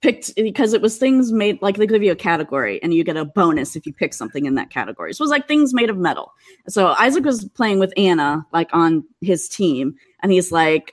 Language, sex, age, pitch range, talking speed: English, female, 30-49, 165-265 Hz, 245 wpm